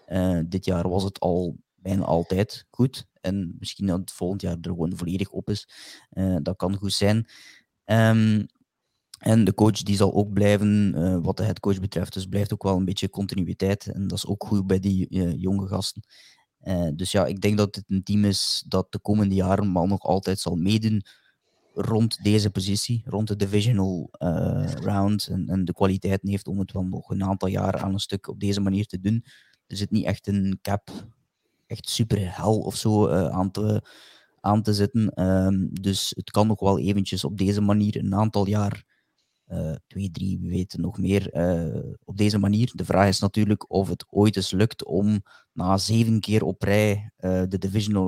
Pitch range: 95-105 Hz